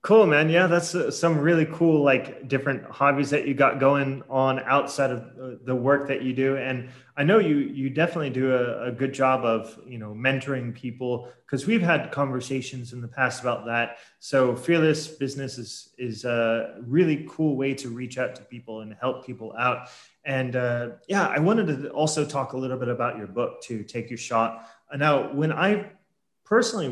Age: 20-39